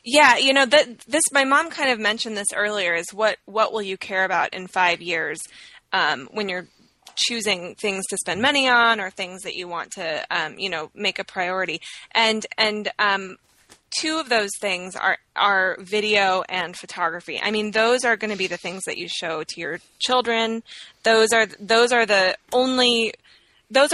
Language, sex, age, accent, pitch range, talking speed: English, female, 20-39, American, 185-225 Hz, 190 wpm